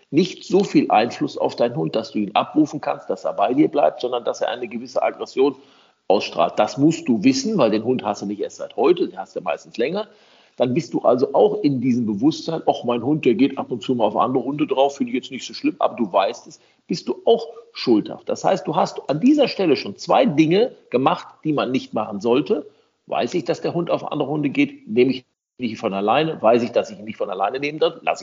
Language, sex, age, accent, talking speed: German, male, 50-69, German, 255 wpm